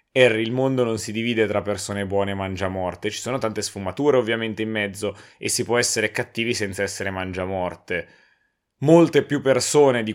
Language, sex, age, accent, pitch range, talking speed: Italian, male, 20-39, native, 100-120 Hz, 175 wpm